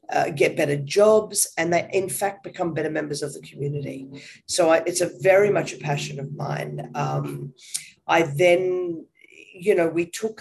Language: English